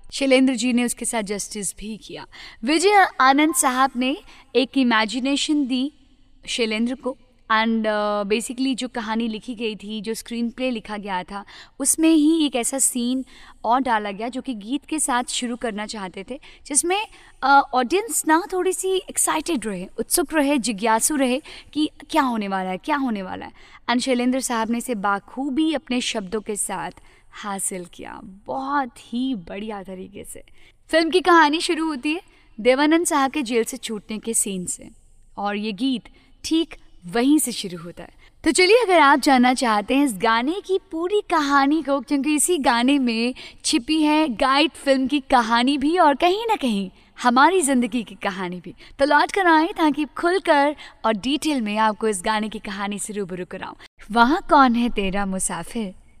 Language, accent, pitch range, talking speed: English, Indian, 220-300 Hz, 130 wpm